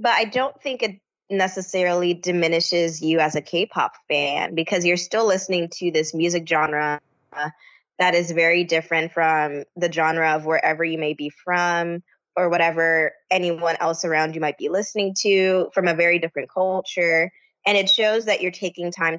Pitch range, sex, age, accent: 160-195 Hz, female, 20-39, American